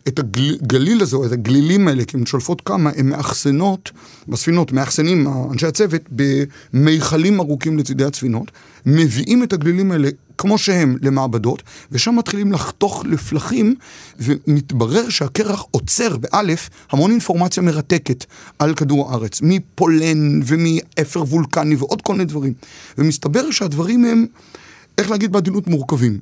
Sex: male